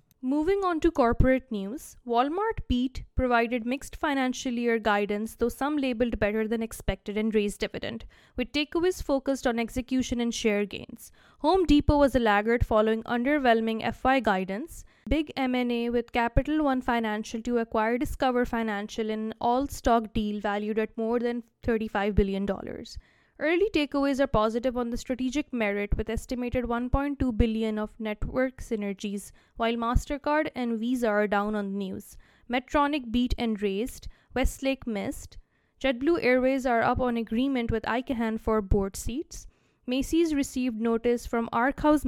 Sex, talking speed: female, 150 wpm